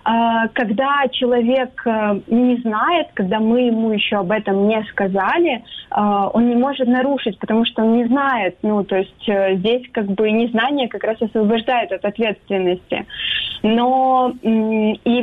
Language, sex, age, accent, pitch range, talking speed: Russian, female, 20-39, native, 195-245 Hz, 140 wpm